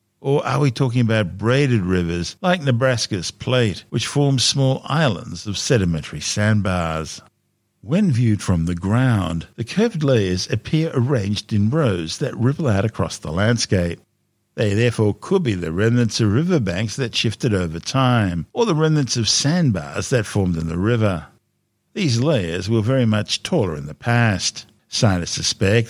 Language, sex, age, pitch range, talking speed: English, male, 60-79, 95-130 Hz, 160 wpm